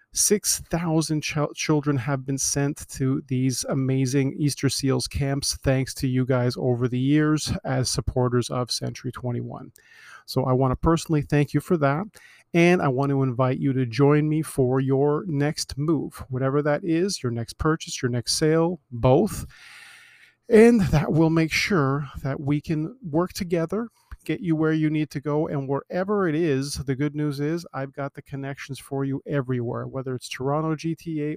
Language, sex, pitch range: English, male, 130-150 Hz